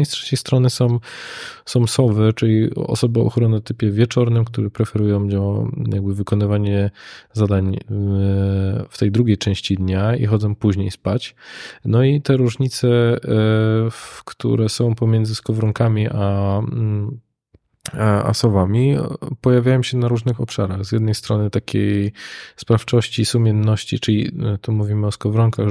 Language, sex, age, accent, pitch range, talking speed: Polish, male, 20-39, native, 105-120 Hz, 125 wpm